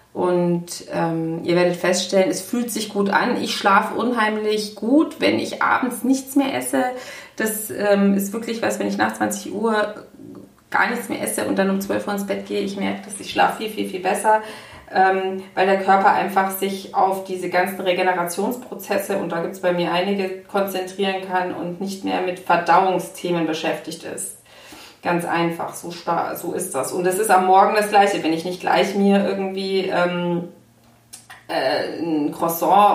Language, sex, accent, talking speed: German, female, German, 180 wpm